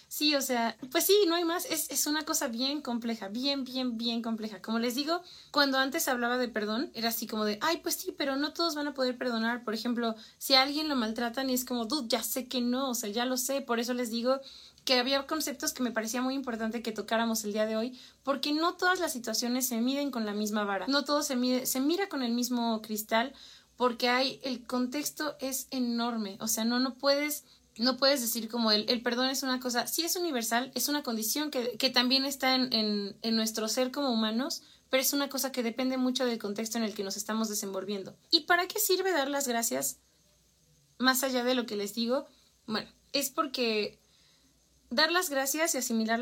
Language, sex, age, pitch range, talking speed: Spanish, female, 20-39, 230-275 Hz, 225 wpm